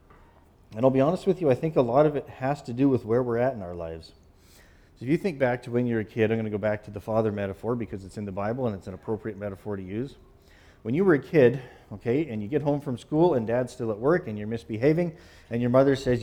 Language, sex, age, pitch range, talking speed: English, male, 40-59, 100-135 Hz, 290 wpm